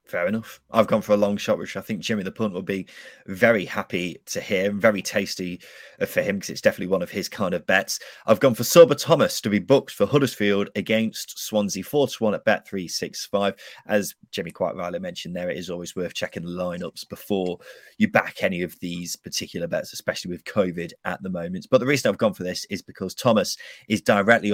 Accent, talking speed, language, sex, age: British, 220 wpm, English, male, 20-39